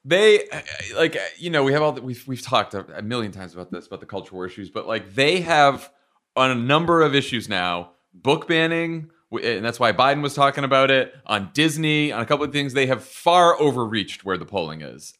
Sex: male